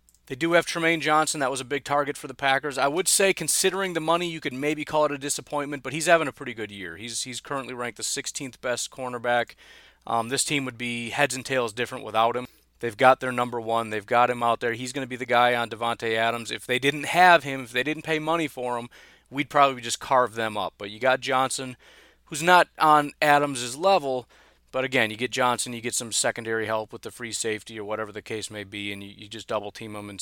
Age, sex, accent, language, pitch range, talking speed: 30-49, male, American, English, 110-135 Hz, 250 wpm